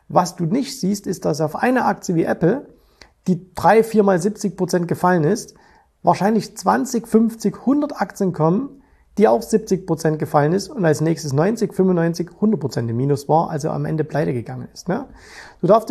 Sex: male